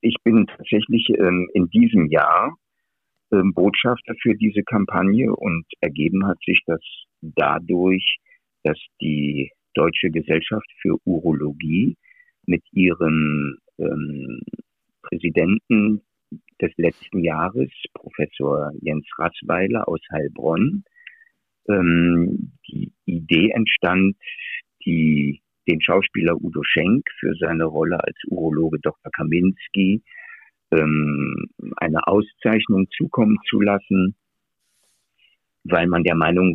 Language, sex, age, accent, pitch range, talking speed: German, male, 50-69, German, 80-105 Hz, 100 wpm